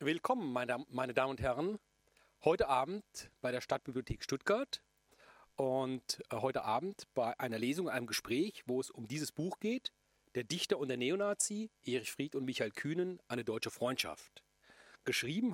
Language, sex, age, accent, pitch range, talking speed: German, male, 40-59, German, 120-170 Hz, 150 wpm